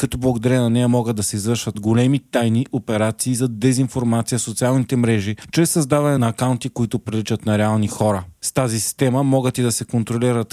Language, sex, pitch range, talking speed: Bulgarian, male, 110-130 Hz, 190 wpm